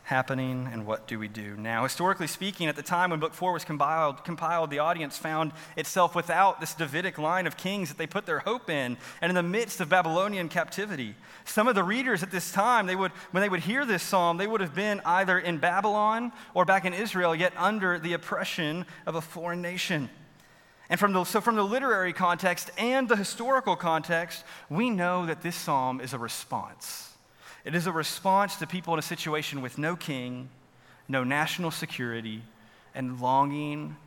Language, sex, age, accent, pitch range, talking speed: English, male, 30-49, American, 140-185 Hz, 195 wpm